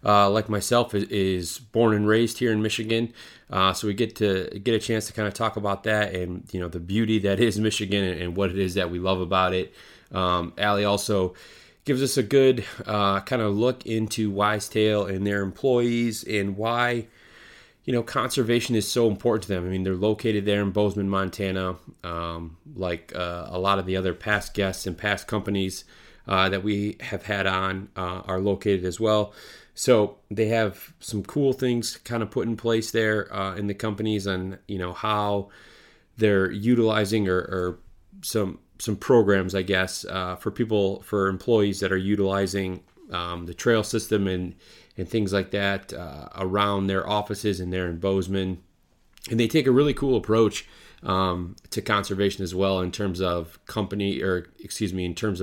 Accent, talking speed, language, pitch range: American, 190 wpm, English, 95-110 Hz